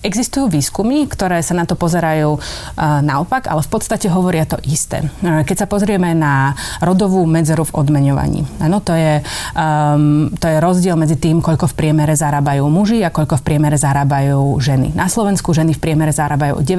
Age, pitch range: 30-49, 150-175 Hz